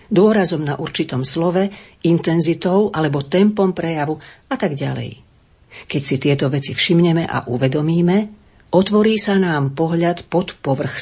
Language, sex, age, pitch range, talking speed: Slovak, female, 40-59, 140-180 Hz, 130 wpm